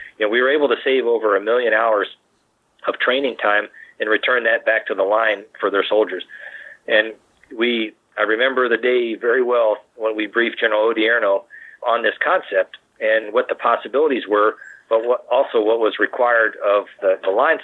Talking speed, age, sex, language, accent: 185 wpm, 40-59, male, English, American